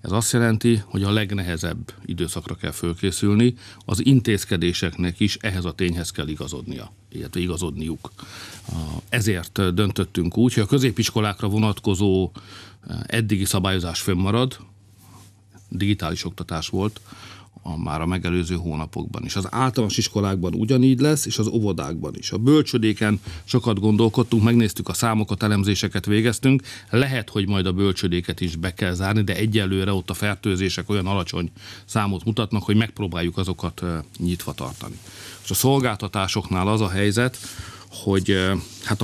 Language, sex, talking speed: Hungarian, male, 135 wpm